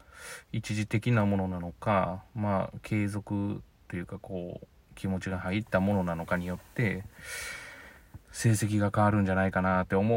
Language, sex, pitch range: Japanese, male, 90-115 Hz